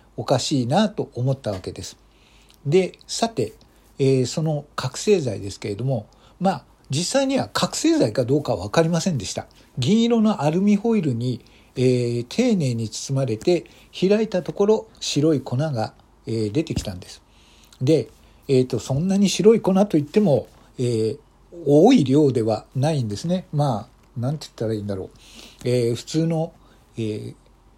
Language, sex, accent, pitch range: Japanese, male, native, 120-165 Hz